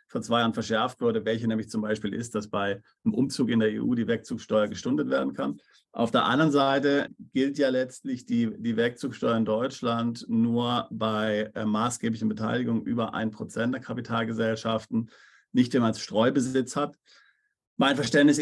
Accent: German